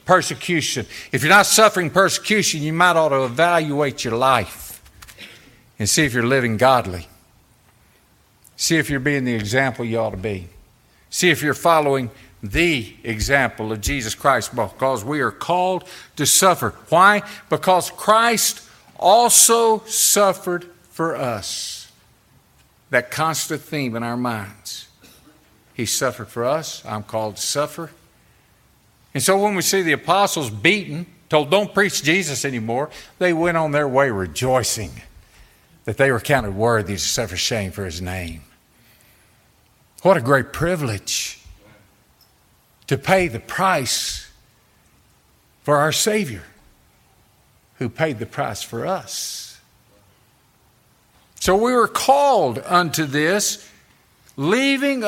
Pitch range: 115-180 Hz